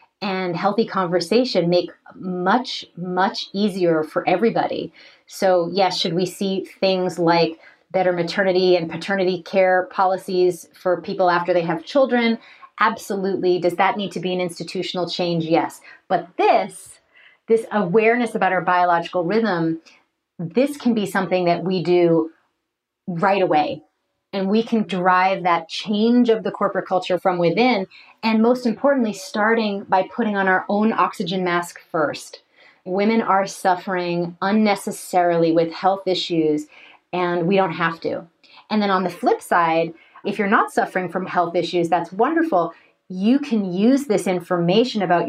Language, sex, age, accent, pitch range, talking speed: English, female, 30-49, American, 175-210 Hz, 150 wpm